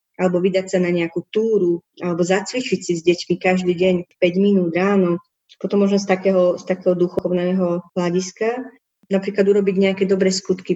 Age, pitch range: 20-39, 175-190 Hz